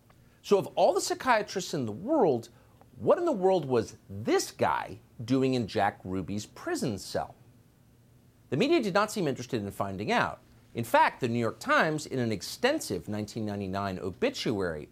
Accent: American